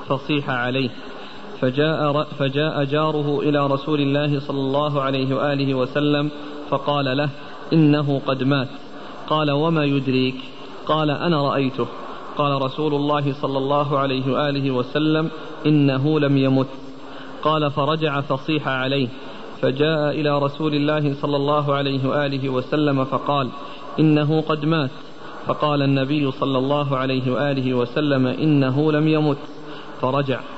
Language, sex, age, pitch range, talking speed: Arabic, male, 40-59, 135-150 Hz, 125 wpm